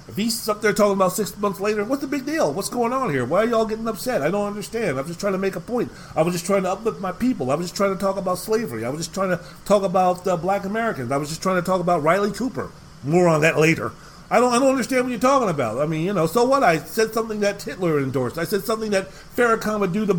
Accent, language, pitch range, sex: American, English, 150-215 Hz, male